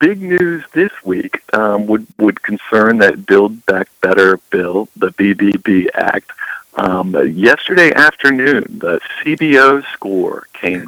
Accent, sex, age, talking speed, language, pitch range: American, male, 50-69, 125 wpm, English, 95-130 Hz